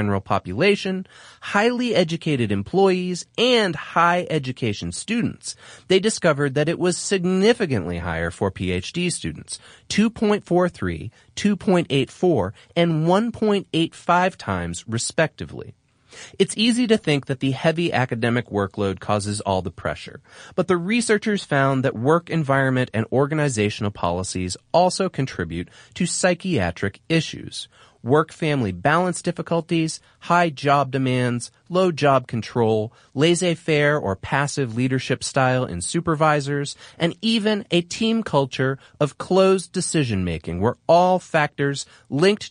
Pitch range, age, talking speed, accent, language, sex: 110-175 Hz, 30-49, 115 wpm, American, English, male